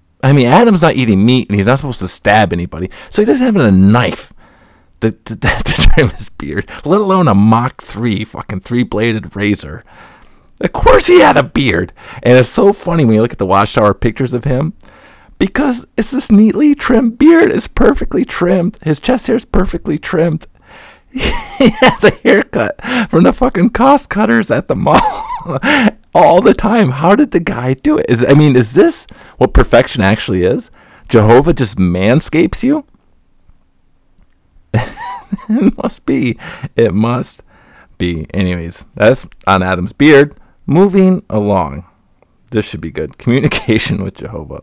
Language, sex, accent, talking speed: English, male, American, 160 wpm